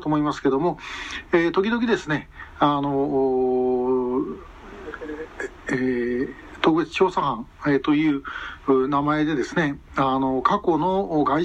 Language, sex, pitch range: Japanese, male, 135-165 Hz